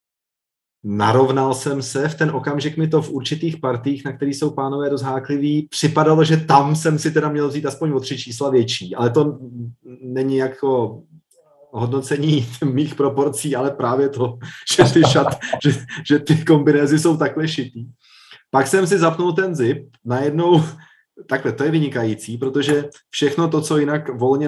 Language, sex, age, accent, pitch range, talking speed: Czech, male, 30-49, native, 125-150 Hz, 160 wpm